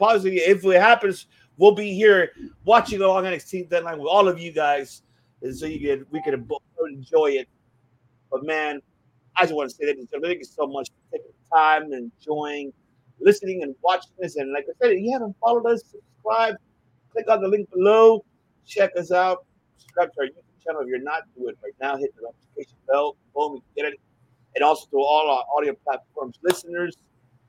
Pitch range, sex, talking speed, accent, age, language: 140-225 Hz, male, 205 wpm, American, 50-69, English